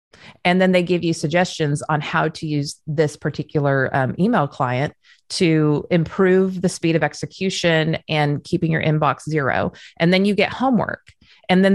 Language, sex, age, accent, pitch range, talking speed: English, female, 30-49, American, 155-200 Hz, 170 wpm